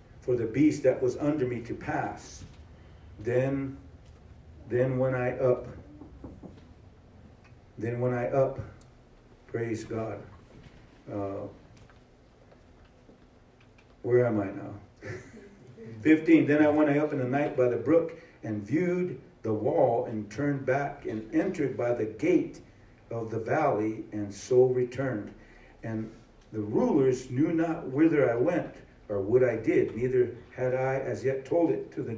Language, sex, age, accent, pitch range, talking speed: English, male, 50-69, American, 110-130 Hz, 140 wpm